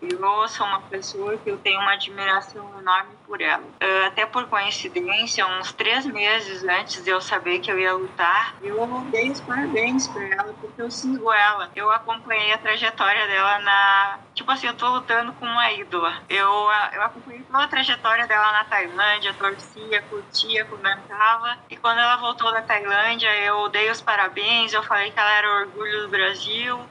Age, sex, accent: 20-39, female, Brazilian